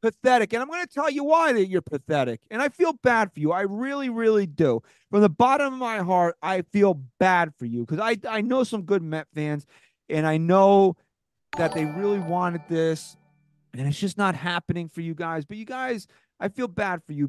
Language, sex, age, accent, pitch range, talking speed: English, male, 30-49, American, 155-210 Hz, 220 wpm